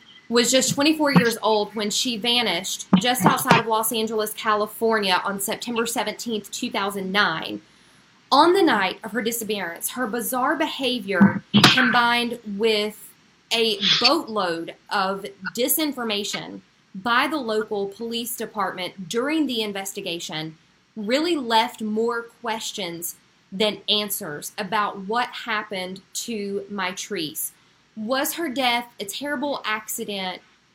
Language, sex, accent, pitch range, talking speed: English, female, American, 200-240 Hz, 115 wpm